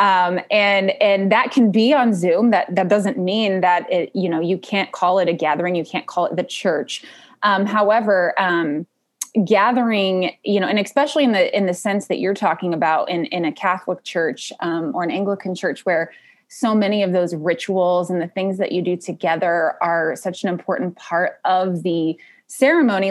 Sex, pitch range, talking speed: female, 180-240 Hz, 195 wpm